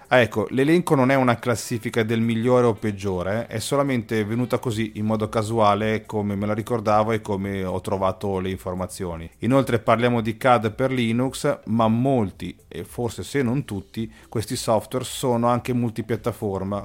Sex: male